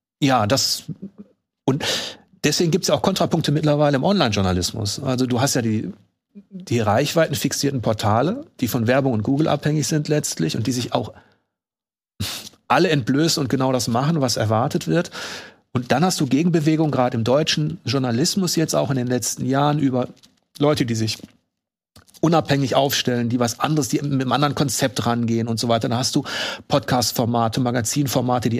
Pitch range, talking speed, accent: 120-155 Hz, 170 wpm, German